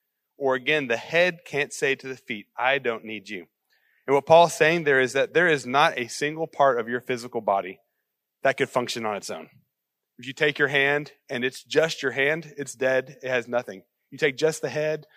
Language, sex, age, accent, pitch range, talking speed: English, male, 30-49, American, 125-150 Hz, 220 wpm